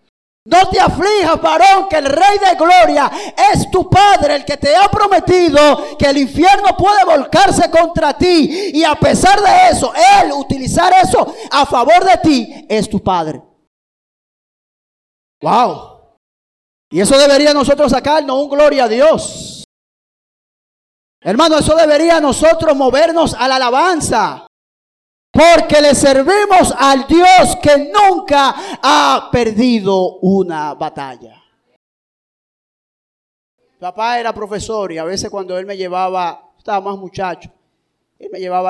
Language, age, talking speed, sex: Spanish, 40-59, 130 wpm, male